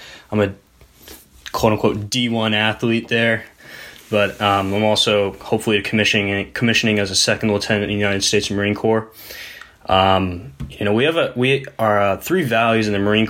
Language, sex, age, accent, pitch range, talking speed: English, male, 20-39, American, 90-120 Hz, 170 wpm